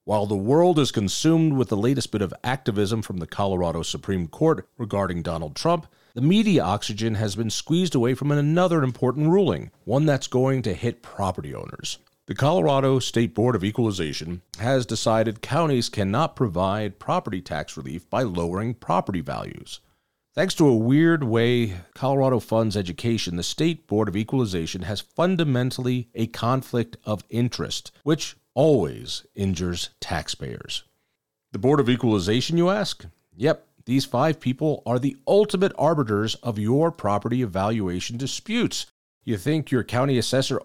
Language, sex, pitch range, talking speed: English, male, 105-140 Hz, 150 wpm